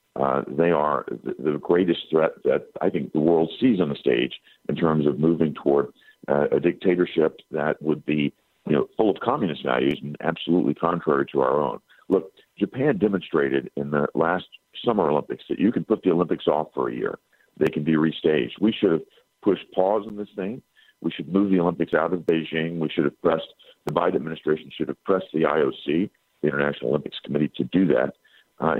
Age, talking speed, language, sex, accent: 50-69, 200 wpm, English, male, American